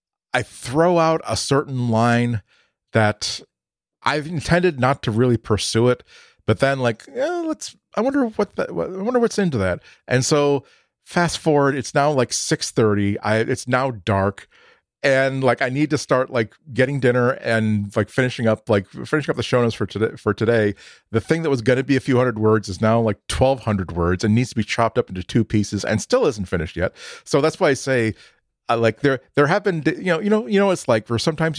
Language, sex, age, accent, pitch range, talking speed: English, male, 40-59, American, 105-145 Hz, 215 wpm